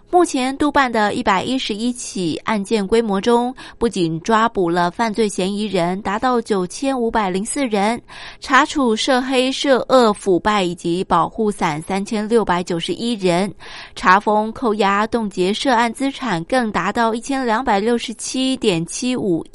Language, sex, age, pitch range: Japanese, female, 20-39, 190-250 Hz